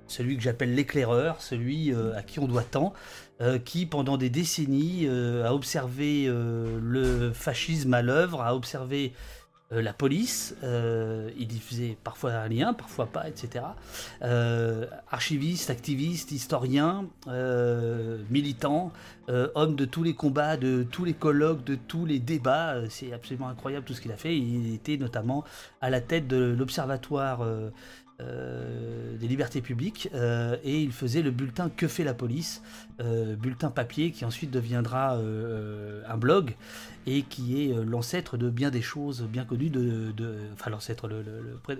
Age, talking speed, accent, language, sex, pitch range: 30-49, 170 wpm, French, French, male, 115-145 Hz